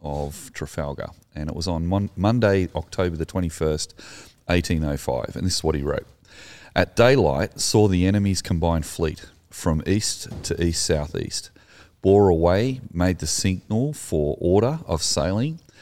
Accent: Australian